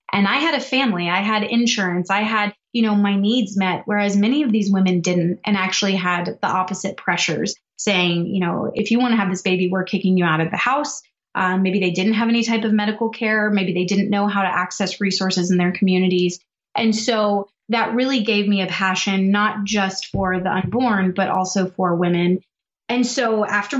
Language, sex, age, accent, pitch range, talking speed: English, female, 20-39, American, 185-220 Hz, 215 wpm